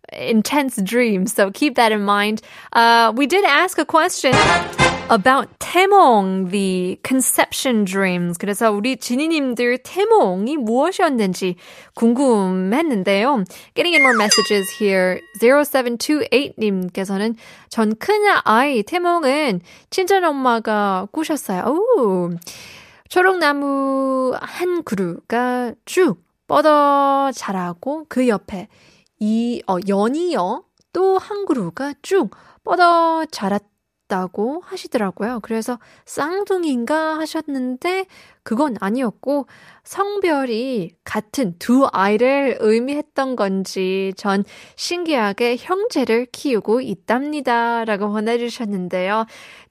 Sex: female